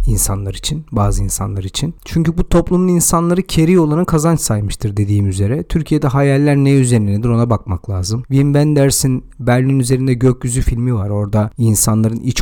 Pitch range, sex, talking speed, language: 105-125 Hz, male, 160 wpm, Turkish